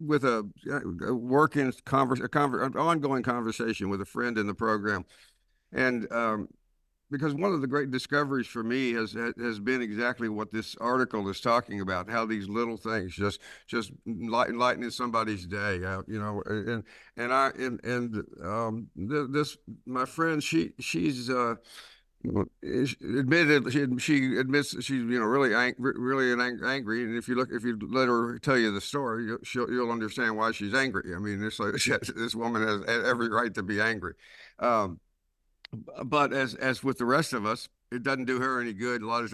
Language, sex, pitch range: English, male, 110-130 Hz